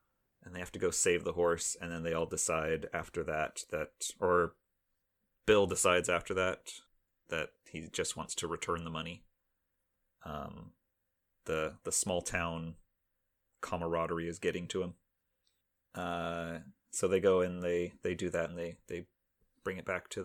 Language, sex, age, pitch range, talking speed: English, male, 30-49, 85-90 Hz, 165 wpm